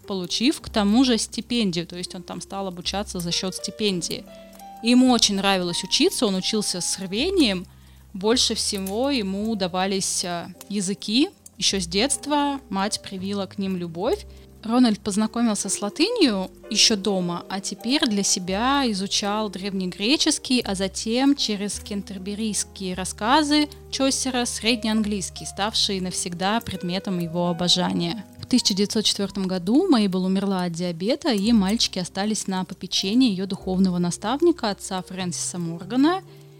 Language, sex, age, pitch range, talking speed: Russian, female, 20-39, 185-230 Hz, 125 wpm